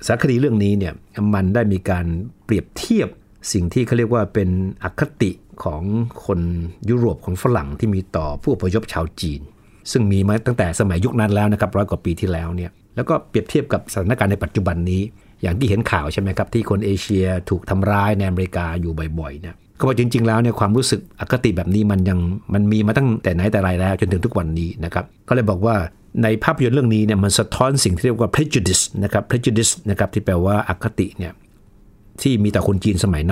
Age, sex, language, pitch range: 60-79, male, Thai, 95-115 Hz